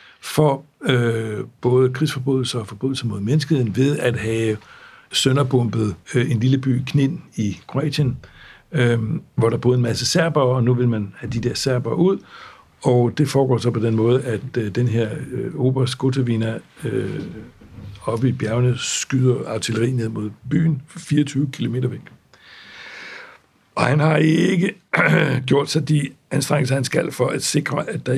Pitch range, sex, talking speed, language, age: 115-145 Hz, male, 165 wpm, Danish, 60-79